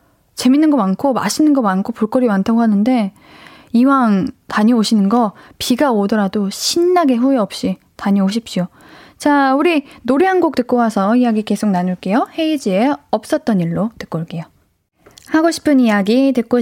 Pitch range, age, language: 185-260 Hz, 20-39, Korean